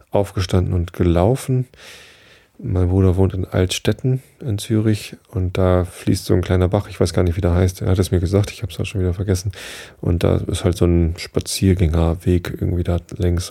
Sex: male